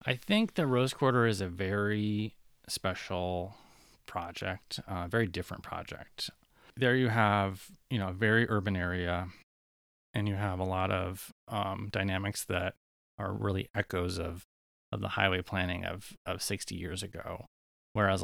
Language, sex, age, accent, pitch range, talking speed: English, male, 20-39, American, 90-105 Hz, 150 wpm